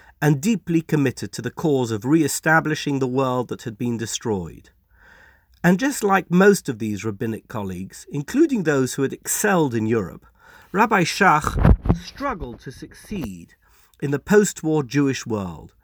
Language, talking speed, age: English, 150 wpm, 50-69